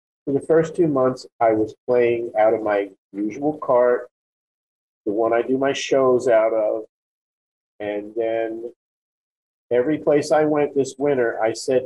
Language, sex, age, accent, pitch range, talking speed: English, male, 40-59, American, 120-155 Hz, 155 wpm